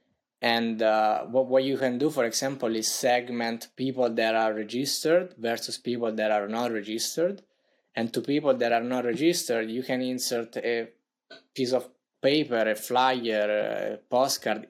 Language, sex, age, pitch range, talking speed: English, male, 20-39, 115-140 Hz, 160 wpm